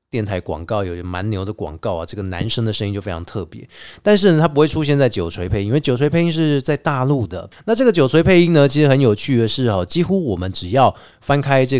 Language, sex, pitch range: Chinese, male, 100-140 Hz